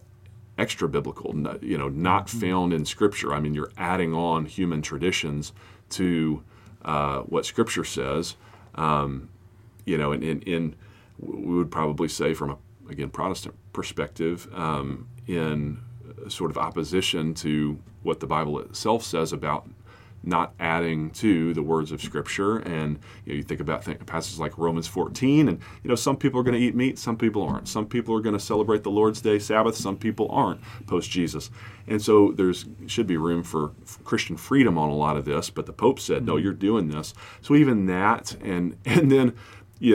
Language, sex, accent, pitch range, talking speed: English, male, American, 80-110 Hz, 185 wpm